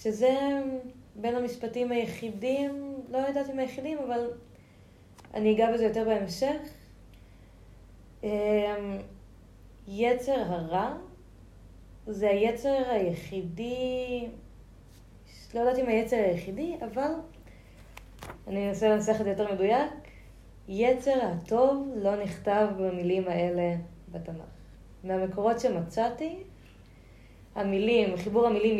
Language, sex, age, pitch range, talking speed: Hebrew, female, 20-39, 175-230 Hz, 90 wpm